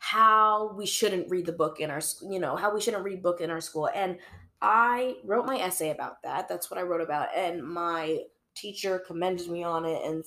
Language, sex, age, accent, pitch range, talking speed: English, female, 20-39, American, 175-225 Hz, 220 wpm